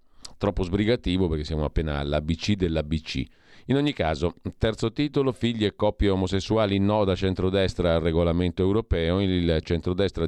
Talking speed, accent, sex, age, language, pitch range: 140 wpm, native, male, 40-59, Italian, 80-100 Hz